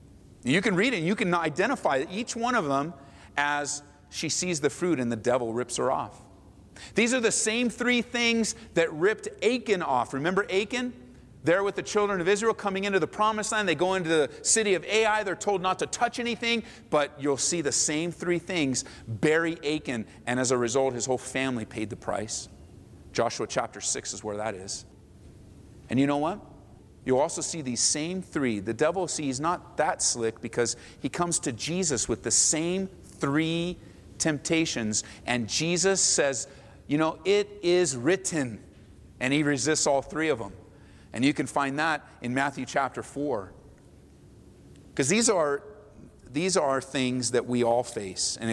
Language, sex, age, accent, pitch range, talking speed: English, male, 40-59, American, 115-175 Hz, 180 wpm